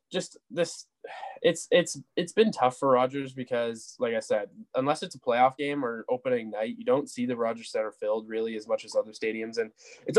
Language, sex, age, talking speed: English, male, 10-29, 210 wpm